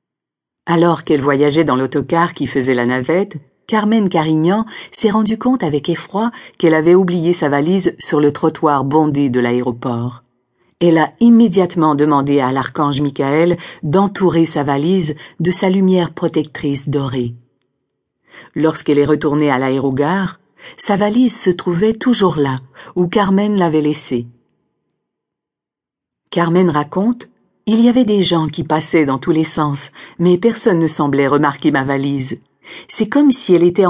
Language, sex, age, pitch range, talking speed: French, female, 50-69, 145-190 Hz, 145 wpm